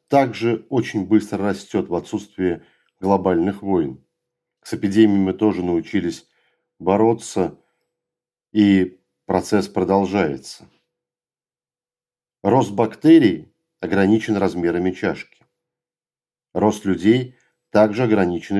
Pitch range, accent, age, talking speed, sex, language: 95-115 Hz, native, 40-59, 85 wpm, male, Russian